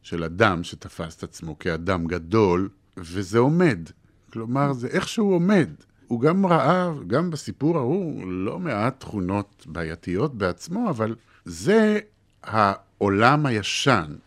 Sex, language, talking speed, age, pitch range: male, Hebrew, 120 wpm, 50-69, 95-125 Hz